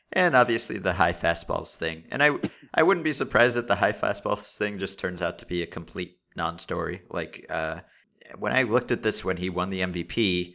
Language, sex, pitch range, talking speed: English, male, 85-105 Hz, 210 wpm